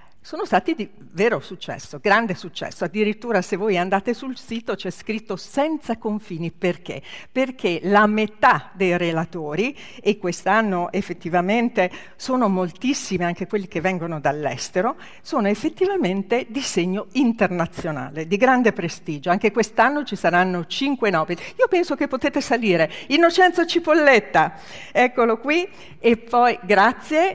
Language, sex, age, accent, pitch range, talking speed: Italian, female, 50-69, native, 195-265 Hz, 130 wpm